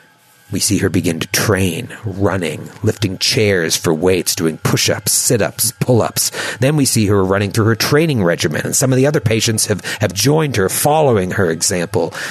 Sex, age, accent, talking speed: male, 40-59, American, 180 wpm